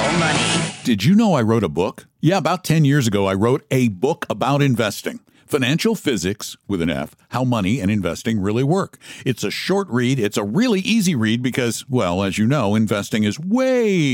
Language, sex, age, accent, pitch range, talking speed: English, male, 60-79, American, 100-135 Hz, 195 wpm